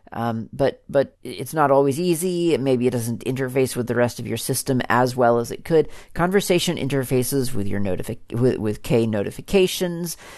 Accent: American